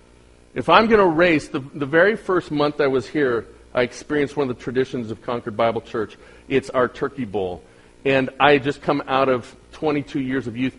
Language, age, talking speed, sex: English, 40-59, 210 wpm, male